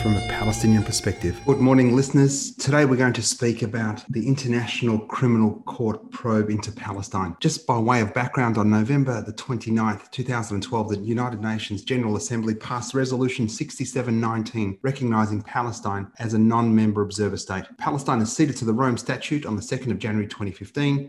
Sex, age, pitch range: male, 30-49, 110-135 Hz